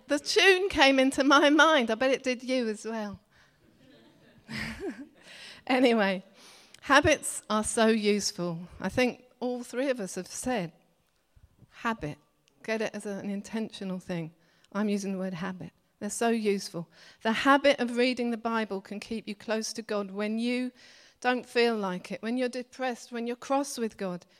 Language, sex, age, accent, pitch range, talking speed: English, female, 40-59, British, 215-275 Hz, 165 wpm